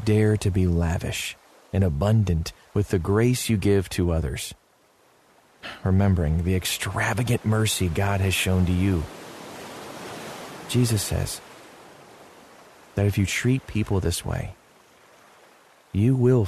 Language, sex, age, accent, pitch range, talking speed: English, male, 40-59, American, 90-105 Hz, 120 wpm